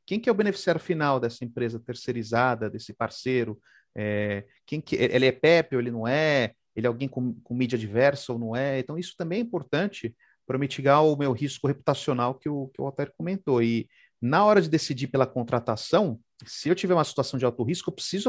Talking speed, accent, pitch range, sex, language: 205 wpm, Brazilian, 120-155 Hz, male, Portuguese